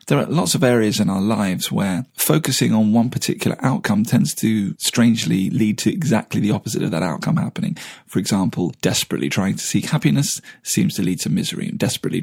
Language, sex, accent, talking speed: English, male, British, 195 wpm